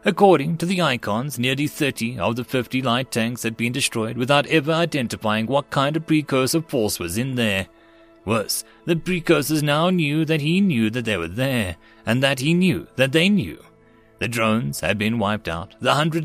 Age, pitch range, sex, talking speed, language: 30-49, 110-155 Hz, male, 190 wpm, English